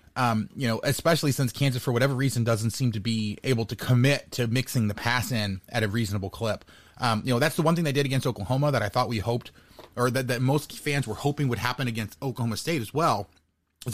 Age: 30-49